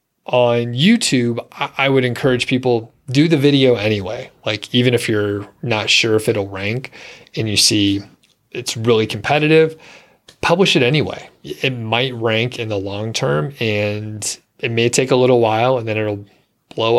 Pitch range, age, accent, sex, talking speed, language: 110-130 Hz, 30-49, American, male, 165 wpm, English